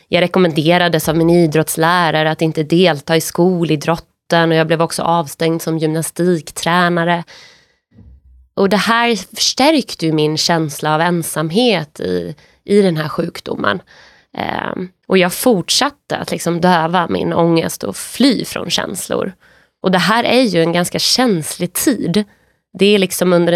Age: 20-39